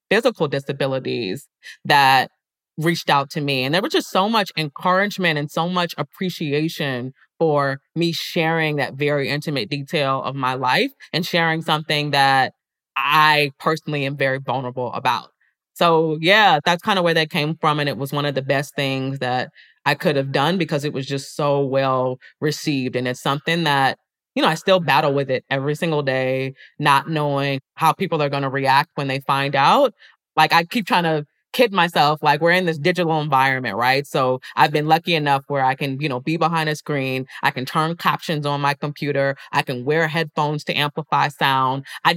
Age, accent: 20-39, American